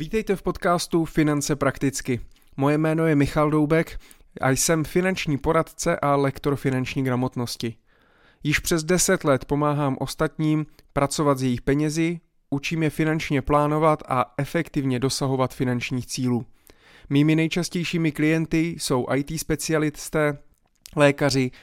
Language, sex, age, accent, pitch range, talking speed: Czech, male, 30-49, native, 130-160 Hz, 120 wpm